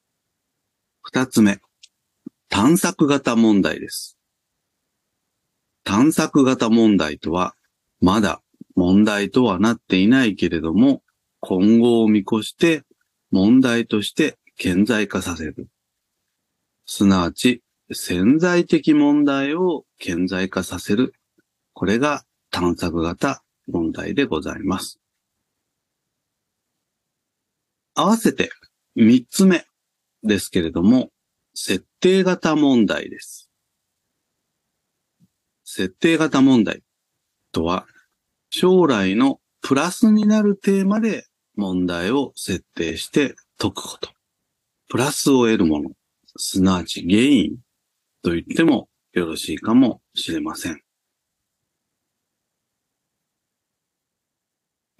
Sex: male